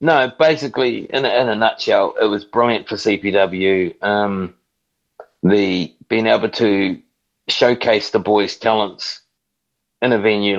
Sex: male